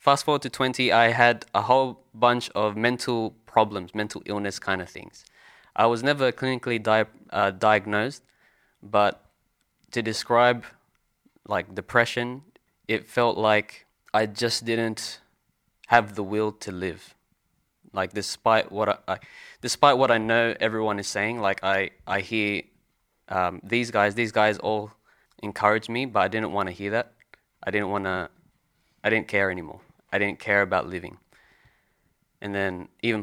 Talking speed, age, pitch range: 155 wpm, 20-39, 100-115 Hz